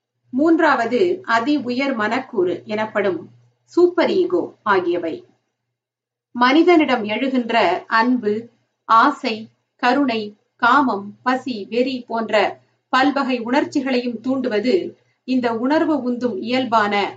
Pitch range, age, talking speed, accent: 200-275 Hz, 50-69, 85 wpm, native